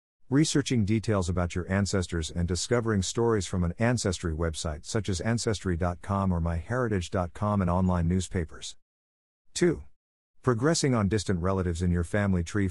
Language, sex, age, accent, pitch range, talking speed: English, male, 50-69, American, 85-110 Hz, 135 wpm